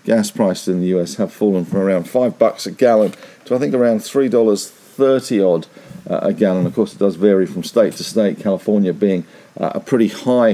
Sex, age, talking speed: male, 50-69, 215 wpm